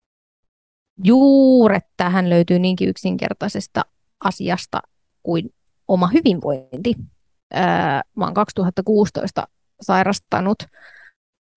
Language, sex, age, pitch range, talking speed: Finnish, female, 30-49, 180-215 Hz, 75 wpm